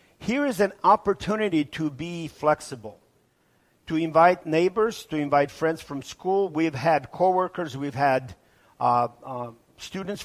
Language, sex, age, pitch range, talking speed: English, male, 50-69, 140-180 Hz, 135 wpm